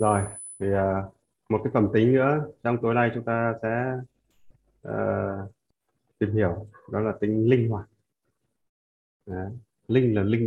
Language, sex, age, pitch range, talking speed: Vietnamese, male, 20-39, 105-125 Hz, 145 wpm